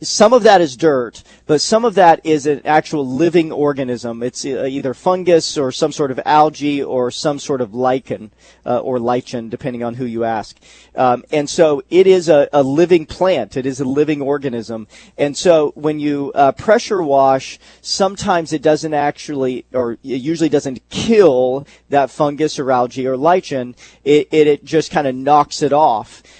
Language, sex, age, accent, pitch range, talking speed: English, male, 40-59, American, 130-165 Hz, 180 wpm